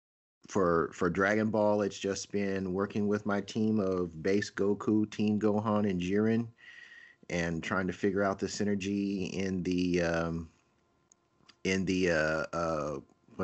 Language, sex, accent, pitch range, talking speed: English, male, American, 85-100 Hz, 145 wpm